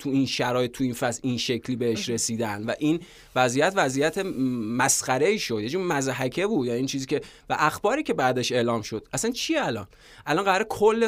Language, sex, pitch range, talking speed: Persian, male, 125-155 Hz, 205 wpm